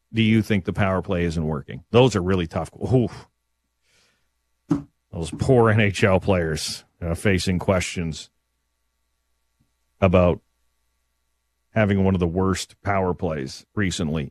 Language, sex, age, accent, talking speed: English, male, 40-59, American, 115 wpm